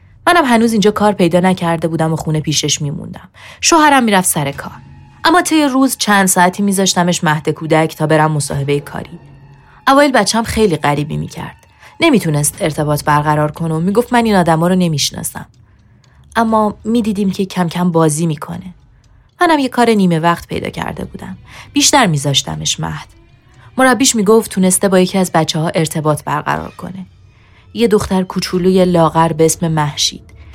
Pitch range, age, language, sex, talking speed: 150-205 Hz, 30-49, Persian, female, 155 wpm